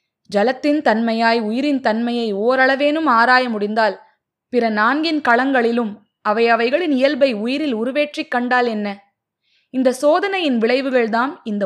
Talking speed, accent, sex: 105 wpm, native, female